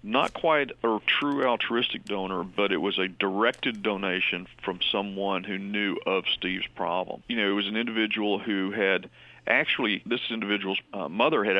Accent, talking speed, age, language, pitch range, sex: American, 170 wpm, 50-69, English, 100-115 Hz, male